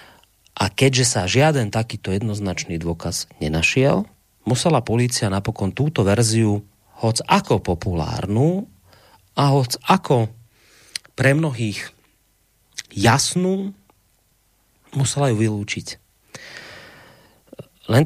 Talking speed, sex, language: 85 wpm, male, Slovak